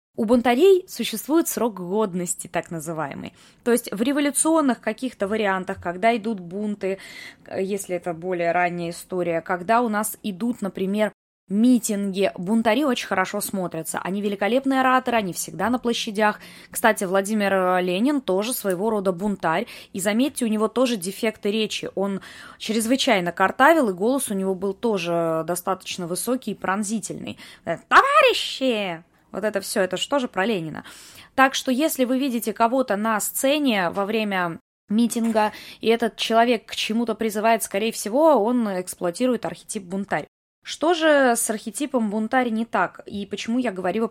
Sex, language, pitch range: female, Russian, 185-235 Hz